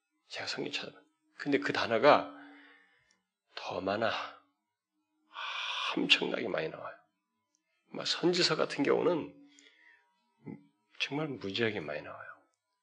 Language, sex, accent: Korean, male, native